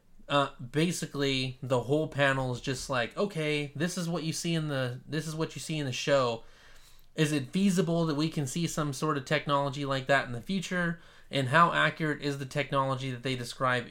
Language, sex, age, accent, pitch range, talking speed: English, male, 20-39, American, 125-155 Hz, 210 wpm